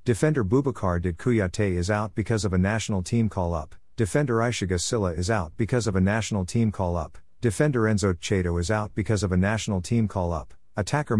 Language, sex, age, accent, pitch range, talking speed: English, male, 50-69, American, 90-115 Hz, 180 wpm